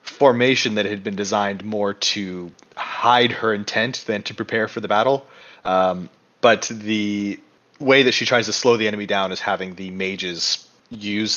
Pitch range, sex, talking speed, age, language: 95-125 Hz, male, 175 wpm, 30-49, English